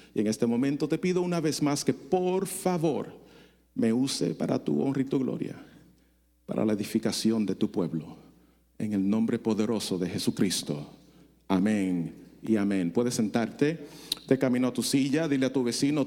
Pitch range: 130-180 Hz